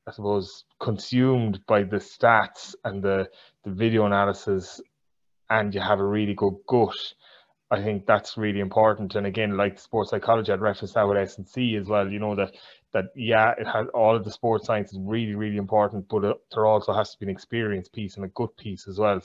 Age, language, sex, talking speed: 20-39, English, male, 215 wpm